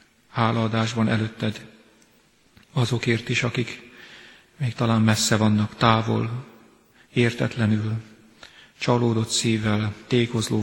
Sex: male